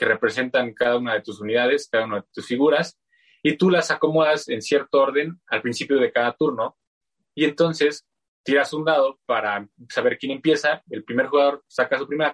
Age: 20-39